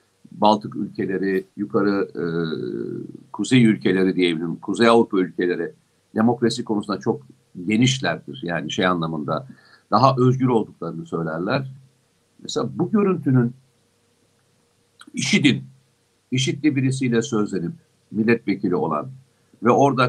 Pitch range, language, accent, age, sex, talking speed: 95-125 Hz, Turkish, native, 50-69, male, 95 wpm